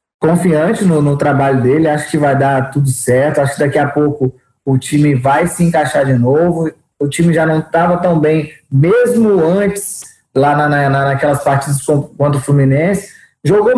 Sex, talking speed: male, 180 wpm